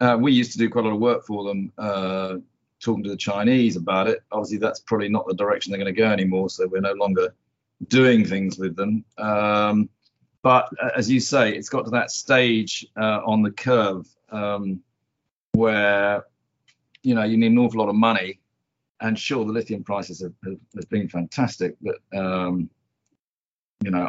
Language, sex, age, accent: English, male, 40-59, British